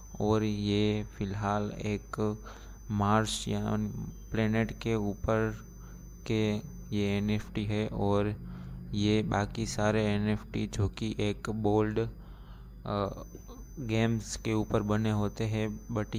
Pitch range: 100-110 Hz